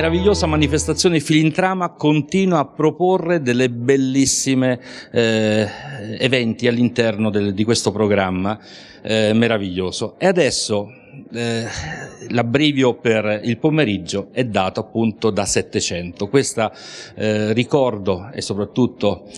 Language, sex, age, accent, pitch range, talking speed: Italian, male, 50-69, native, 105-145 Hz, 110 wpm